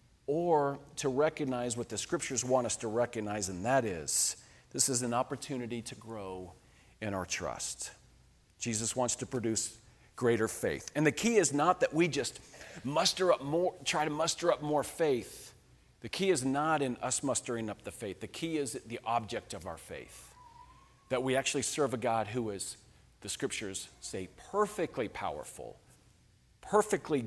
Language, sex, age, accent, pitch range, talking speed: English, male, 40-59, American, 120-170 Hz, 170 wpm